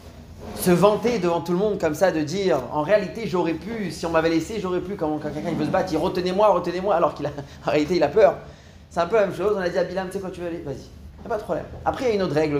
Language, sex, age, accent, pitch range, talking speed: French, male, 30-49, French, 125-175 Hz, 330 wpm